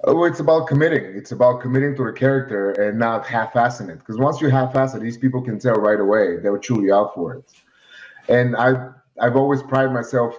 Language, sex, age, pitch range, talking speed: English, male, 30-49, 110-130 Hz, 220 wpm